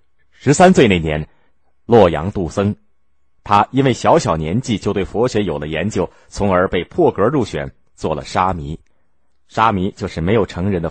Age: 30-49